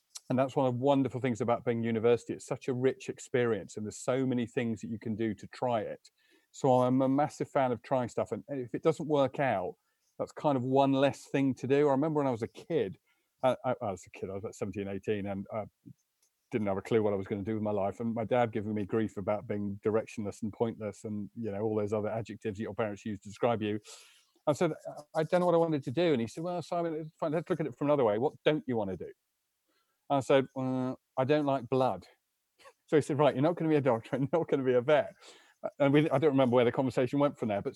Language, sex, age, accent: English, male, 40-59, British